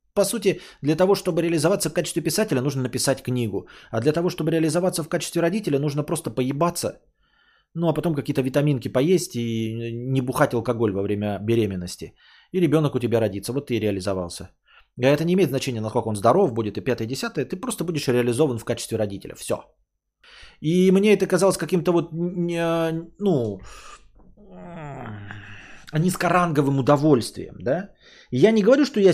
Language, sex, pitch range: Bulgarian, male, 115-175 Hz